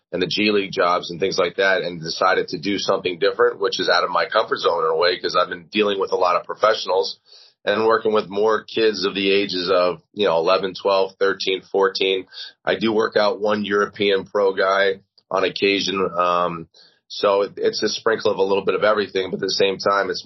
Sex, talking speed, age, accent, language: male, 225 wpm, 30-49, American, Dutch